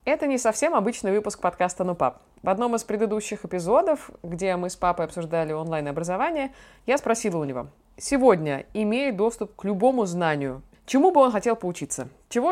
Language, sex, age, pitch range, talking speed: Russian, female, 20-39, 170-220 Hz, 165 wpm